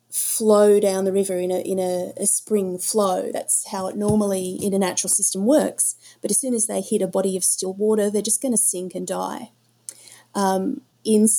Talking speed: 210 wpm